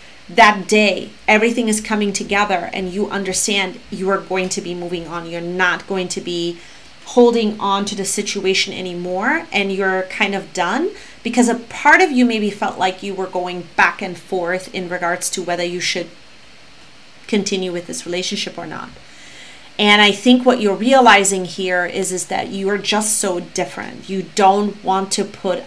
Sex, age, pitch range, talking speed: female, 30-49, 180-210 Hz, 180 wpm